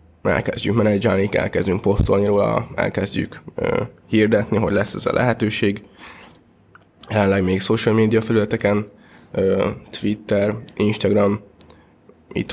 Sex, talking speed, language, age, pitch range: male, 105 wpm, Hungarian, 20-39, 100-110 Hz